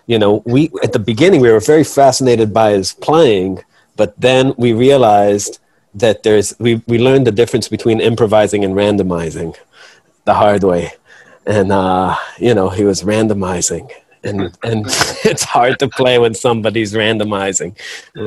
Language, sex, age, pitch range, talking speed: English, male, 30-49, 100-120 Hz, 160 wpm